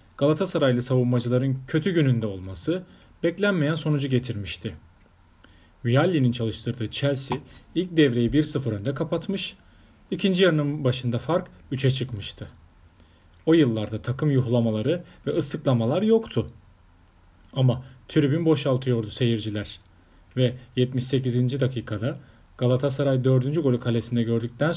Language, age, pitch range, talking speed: Turkish, 40-59, 110-155 Hz, 100 wpm